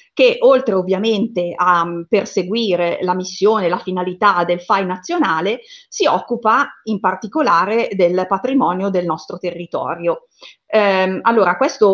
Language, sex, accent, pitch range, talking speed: Italian, female, native, 180-230 Hz, 120 wpm